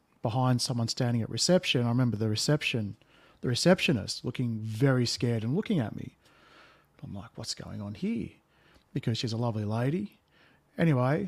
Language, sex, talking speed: English, male, 160 wpm